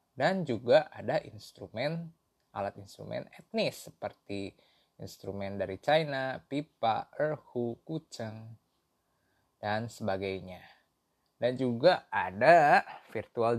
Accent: native